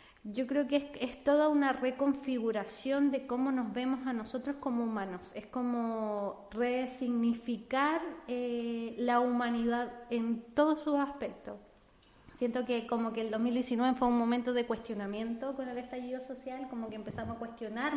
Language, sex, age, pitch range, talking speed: Spanish, female, 20-39, 230-255 Hz, 155 wpm